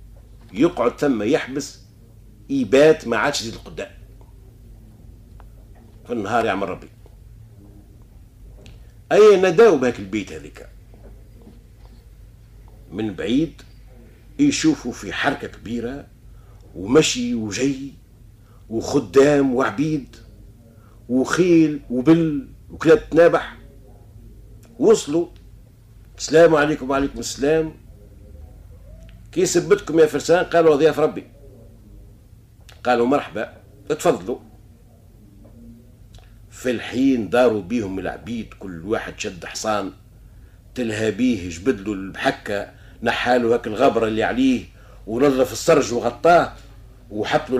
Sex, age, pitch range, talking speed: male, 50-69, 105-135 Hz, 85 wpm